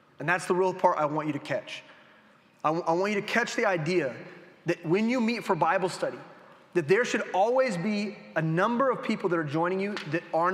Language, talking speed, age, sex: English, 230 wpm, 30-49, male